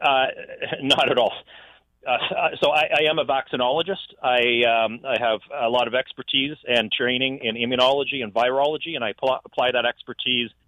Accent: American